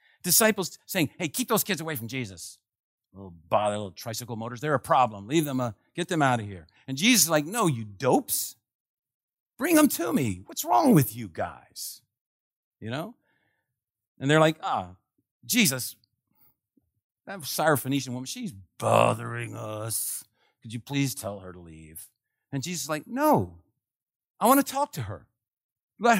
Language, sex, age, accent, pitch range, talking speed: English, male, 50-69, American, 110-175 Hz, 165 wpm